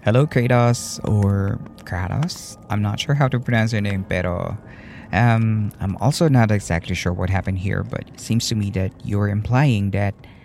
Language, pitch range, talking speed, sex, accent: Filipino, 100-130 Hz, 180 wpm, male, native